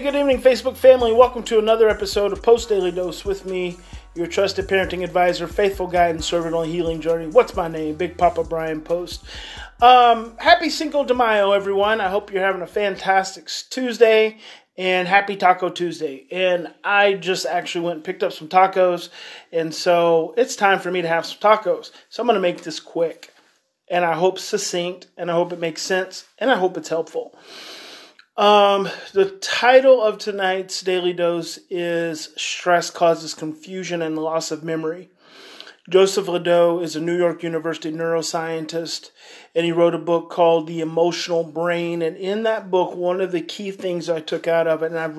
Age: 30-49